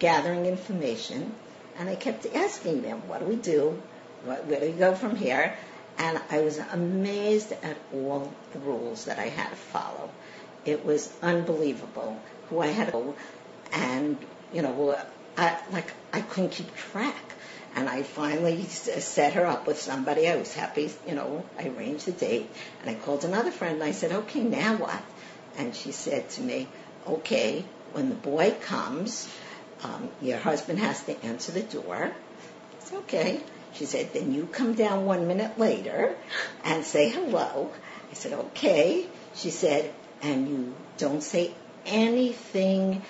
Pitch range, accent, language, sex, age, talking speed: 160-225 Hz, American, English, female, 60-79, 165 wpm